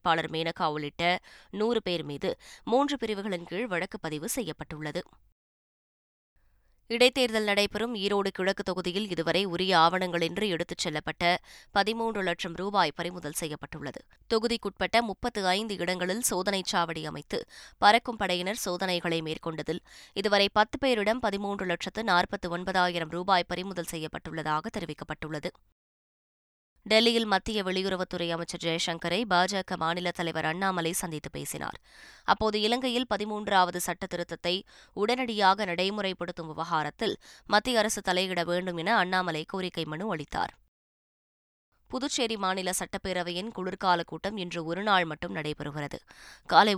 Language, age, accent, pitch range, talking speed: Tamil, 20-39, native, 165-205 Hz, 105 wpm